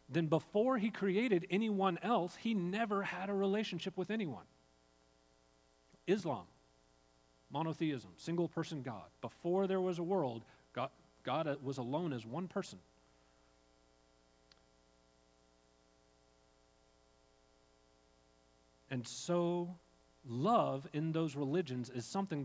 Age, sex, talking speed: 40-59, male, 100 wpm